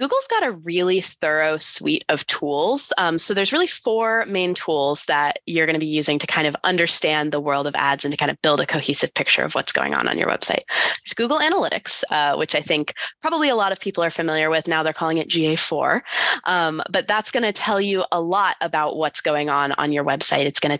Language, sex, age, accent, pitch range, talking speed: English, female, 20-39, American, 150-205 Hz, 230 wpm